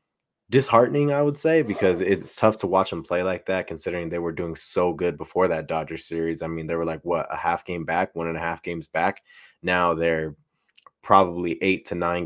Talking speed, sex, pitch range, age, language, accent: 220 wpm, male, 80-95 Hz, 20-39, English, American